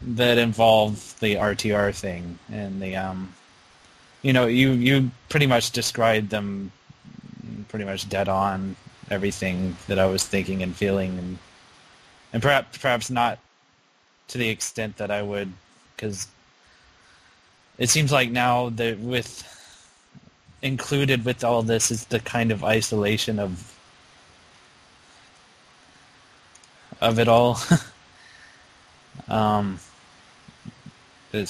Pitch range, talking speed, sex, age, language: 100-125 Hz, 115 wpm, male, 20-39, English